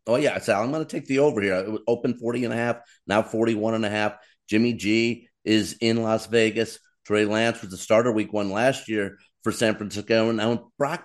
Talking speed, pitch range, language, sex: 200 wpm, 105-125 Hz, English, male